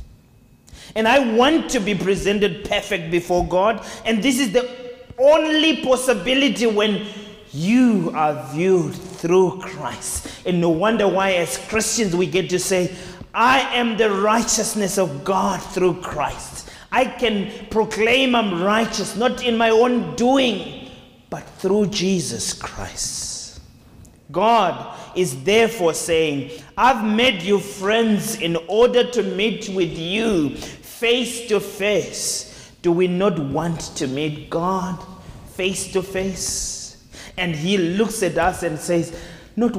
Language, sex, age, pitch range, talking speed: English, male, 30-49, 160-220 Hz, 135 wpm